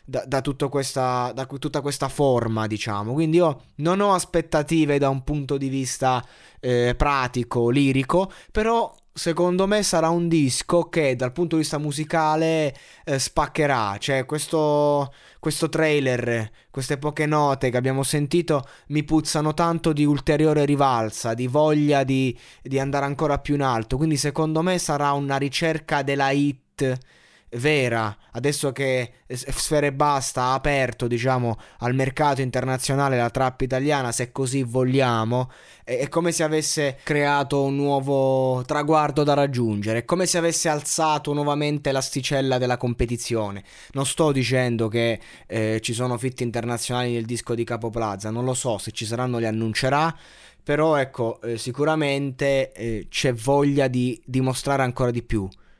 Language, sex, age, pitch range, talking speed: Italian, male, 20-39, 125-150 Hz, 150 wpm